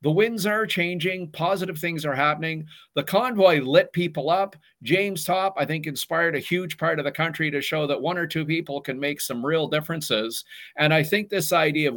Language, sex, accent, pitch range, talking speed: English, male, American, 135-175 Hz, 210 wpm